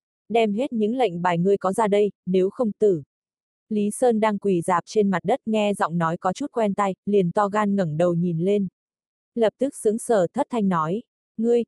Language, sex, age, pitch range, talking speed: Vietnamese, female, 20-39, 180-220 Hz, 215 wpm